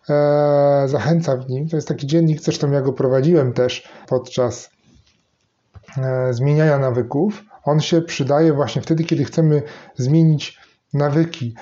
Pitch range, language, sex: 140-165 Hz, Polish, male